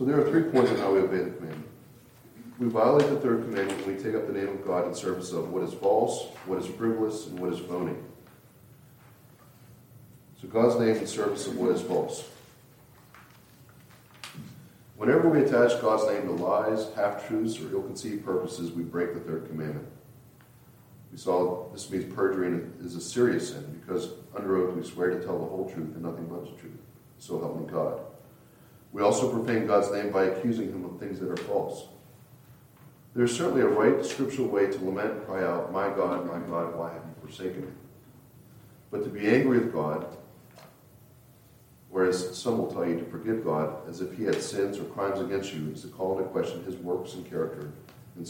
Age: 40-59